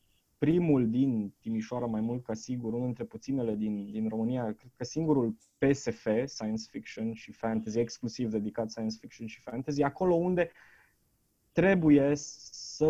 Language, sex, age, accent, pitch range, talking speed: Romanian, male, 20-39, native, 115-150 Hz, 145 wpm